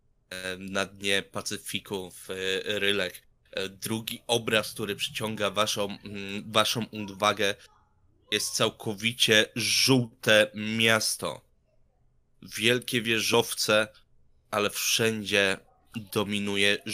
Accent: native